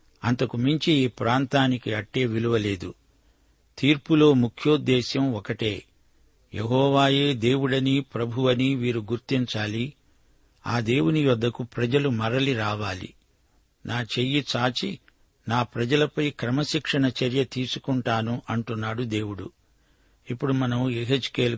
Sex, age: male, 60-79